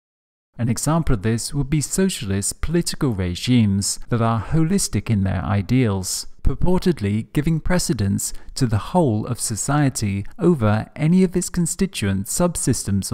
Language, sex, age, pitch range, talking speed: English, male, 40-59, 105-155 Hz, 135 wpm